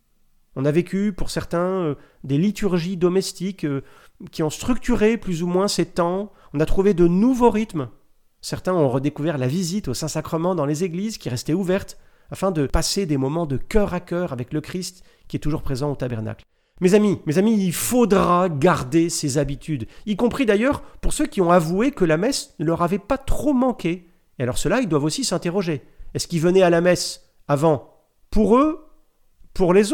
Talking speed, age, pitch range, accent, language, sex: 200 wpm, 40-59, 150-200 Hz, French, French, male